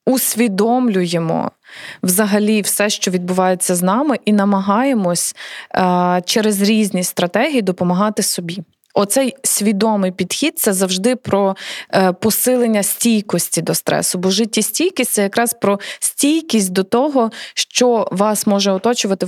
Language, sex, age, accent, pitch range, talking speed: Ukrainian, female, 20-39, native, 185-220 Hz, 120 wpm